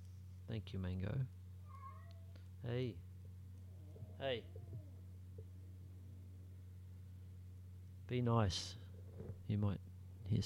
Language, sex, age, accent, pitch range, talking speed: English, male, 40-59, Australian, 95-110 Hz, 55 wpm